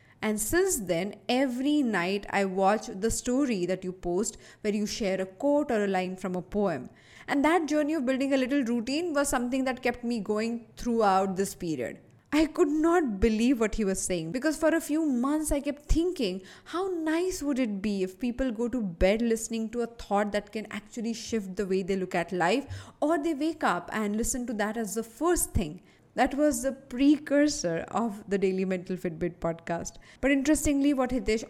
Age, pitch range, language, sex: 20-39, 195-265 Hz, English, female